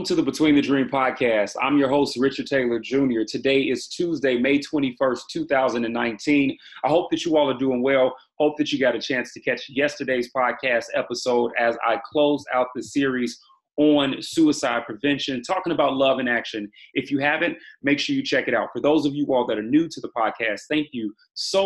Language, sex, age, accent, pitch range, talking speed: English, male, 30-49, American, 125-150 Hz, 205 wpm